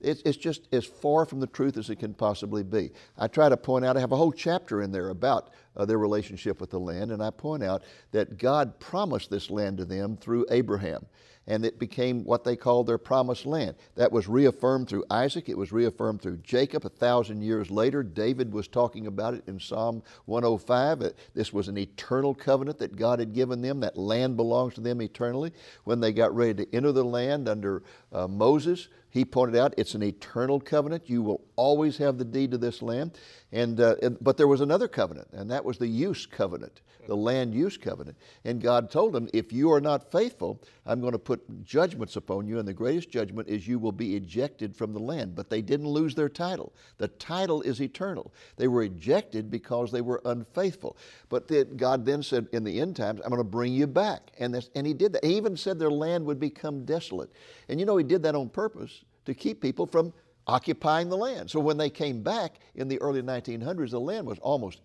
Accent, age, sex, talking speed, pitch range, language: American, 60-79, male, 220 wpm, 110-140 Hz, English